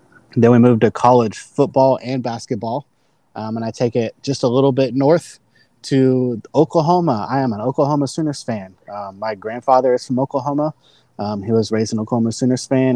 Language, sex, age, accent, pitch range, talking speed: English, male, 20-39, American, 110-130 Hz, 185 wpm